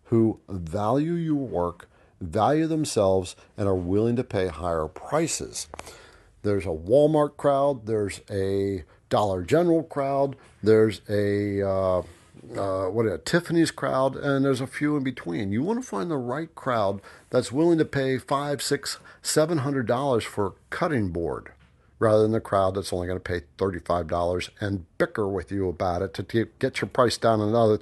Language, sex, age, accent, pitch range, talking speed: English, male, 50-69, American, 95-135 Hz, 165 wpm